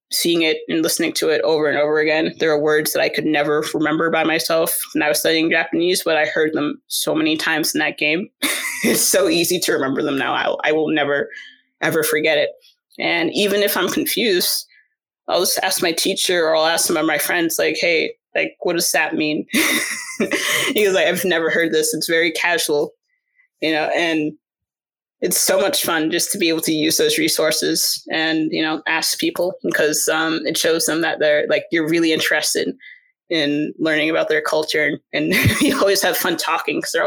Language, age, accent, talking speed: English, 20-39, American, 205 wpm